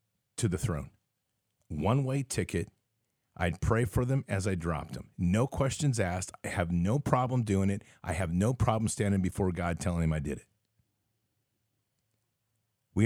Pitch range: 95-115 Hz